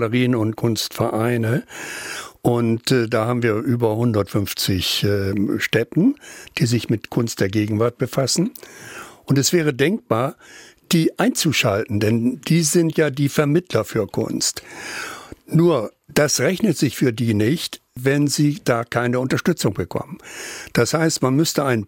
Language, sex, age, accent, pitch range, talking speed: German, male, 60-79, German, 115-150 Hz, 135 wpm